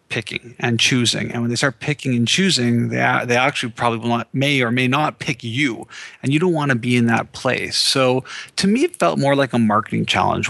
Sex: male